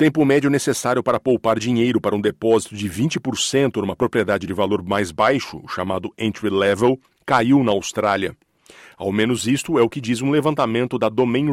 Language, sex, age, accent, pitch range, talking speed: Portuguese, male, 40-59, Brazilian, 105-130 Hz, 180 wpm